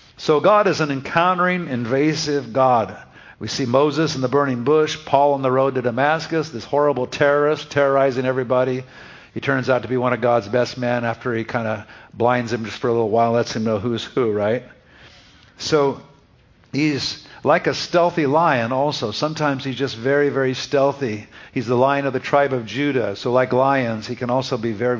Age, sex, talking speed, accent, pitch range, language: 50-69, male, 195 wpm, American, 120-145 Hz, English